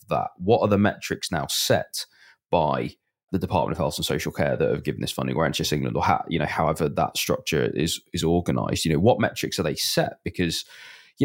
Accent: British